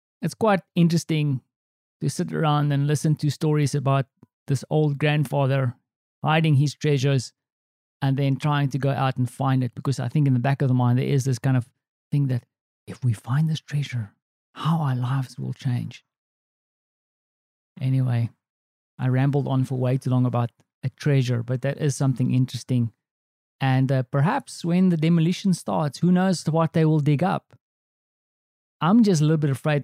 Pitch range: 130-150 Hz